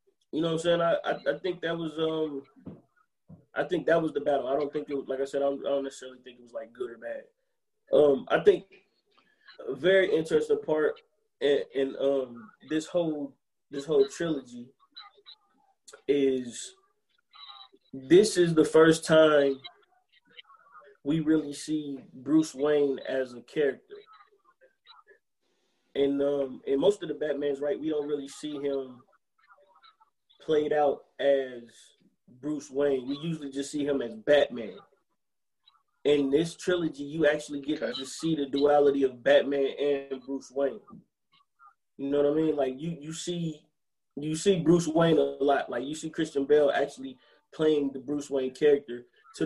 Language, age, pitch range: English, 20-39, 140-175 Hz